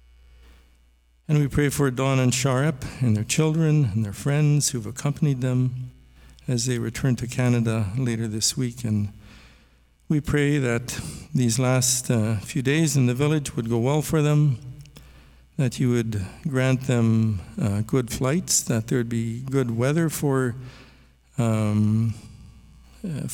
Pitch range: 100-140 Hz